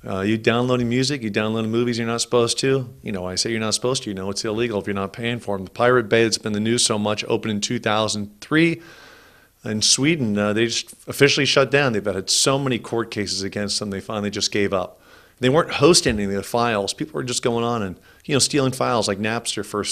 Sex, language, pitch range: male, English, 100-120 Hz